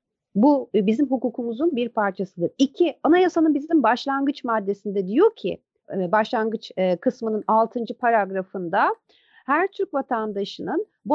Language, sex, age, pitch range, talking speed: Turkish, female, 50-69, 225-295 Hz, 110 wpm